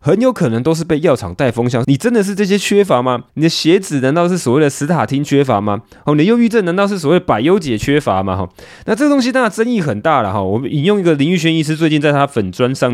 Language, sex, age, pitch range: Chinese, male, 20-39, 115-175 Hz